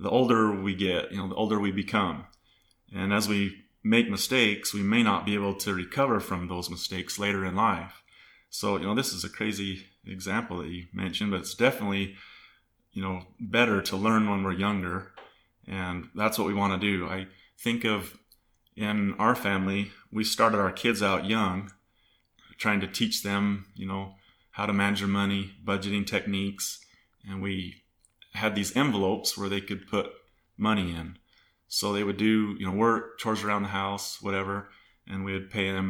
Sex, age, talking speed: male, 30-49, 185 wpm